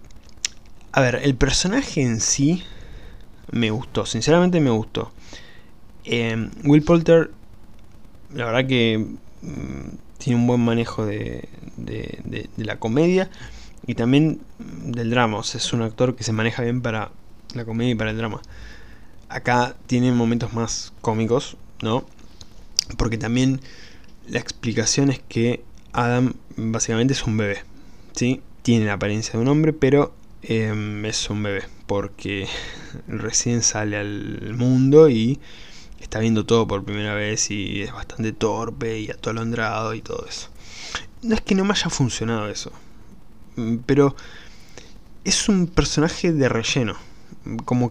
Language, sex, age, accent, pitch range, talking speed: Spanish, male, 20-39, Argentinian, 110-130 Hz, 135 wpm